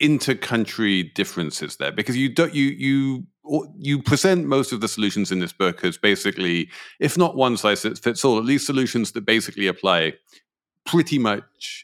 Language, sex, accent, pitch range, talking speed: English, male, British, 100-135 Hz, 170 wpm